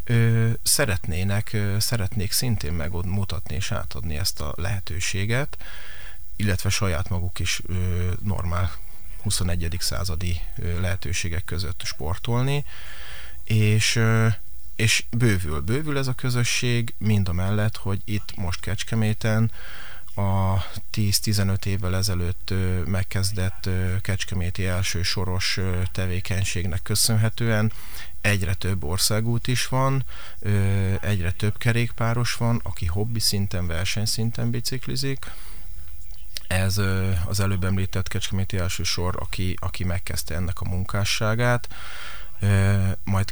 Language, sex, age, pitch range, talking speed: Hungarian, male, 30-49, 90-110 Hz, 95 wpm